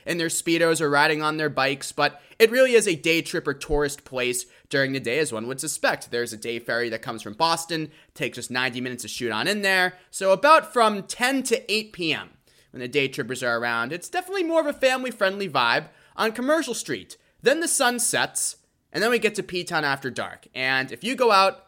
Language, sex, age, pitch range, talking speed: English, male, 20-39, 130-185 Hz, 225 wpm